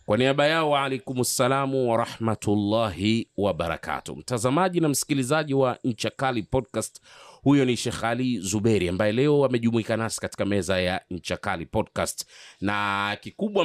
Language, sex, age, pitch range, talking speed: Swahili, male, 30-49, 95-125 Hz, 130 wpm